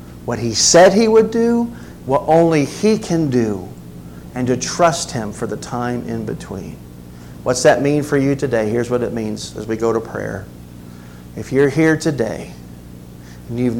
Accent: American